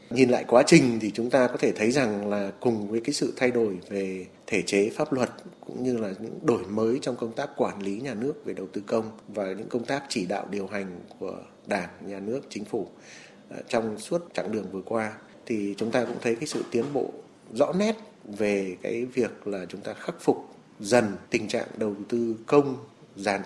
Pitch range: 105-130 Hz